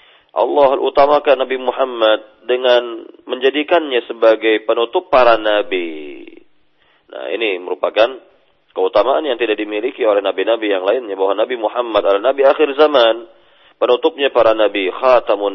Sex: male